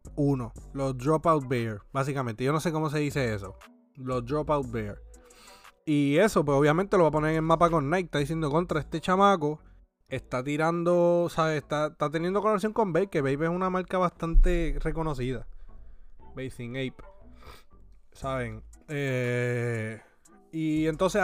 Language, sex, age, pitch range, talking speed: Spanish, male, 20-39, 130-170 Hz, 155 wpm